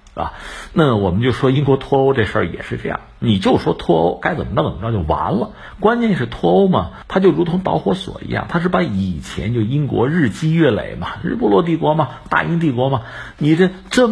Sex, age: male, 50-69